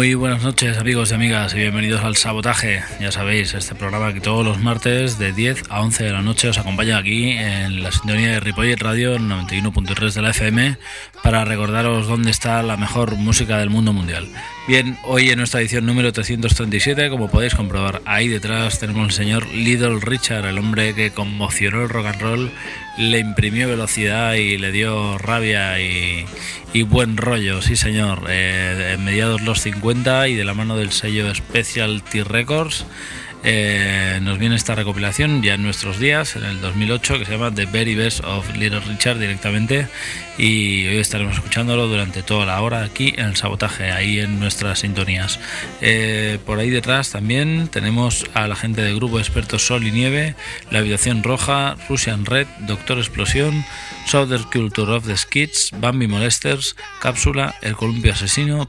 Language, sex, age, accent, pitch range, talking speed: Spanish, male, 20-39, Spanish, 105-120 Hz, 175 wpm